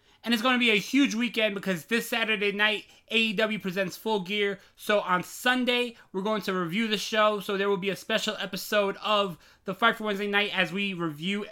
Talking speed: 215 wpm